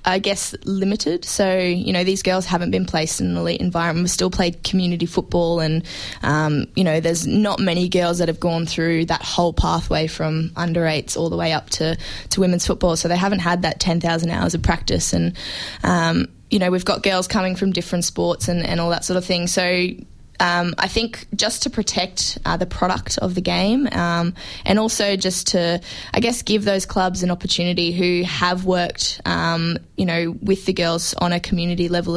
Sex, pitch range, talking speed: female, 165-185 Hz, 205 wpm